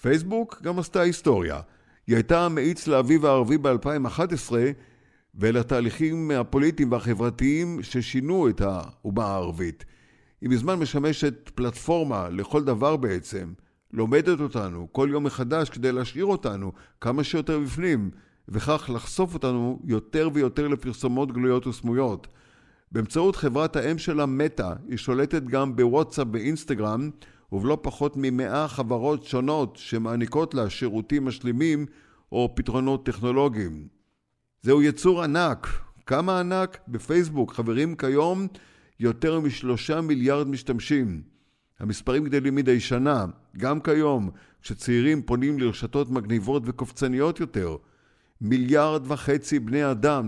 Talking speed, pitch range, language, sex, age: 110 wpm, 120-150 Hz, Hebrew, male, 50-69